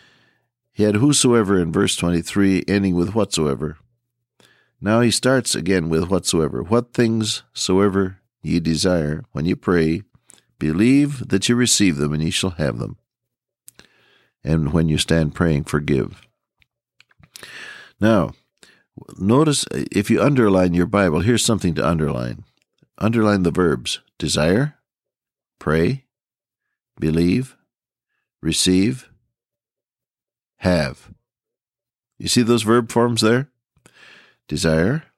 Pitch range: 85-120 Hz